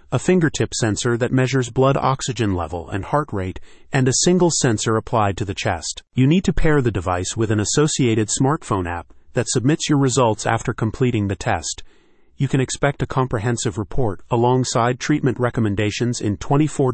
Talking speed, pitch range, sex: 175 wpm, 105-135 Hz, male